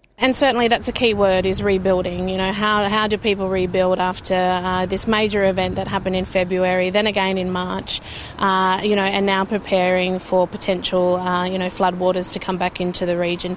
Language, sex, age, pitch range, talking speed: English, female, 20-39, 155-200 Hz, 205 wpm